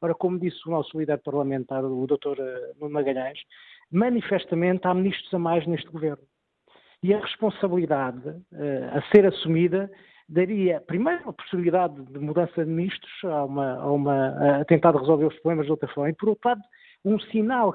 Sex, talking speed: male, 160 wpm